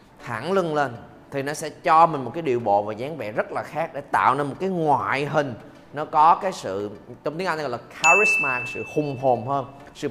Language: Vietnamese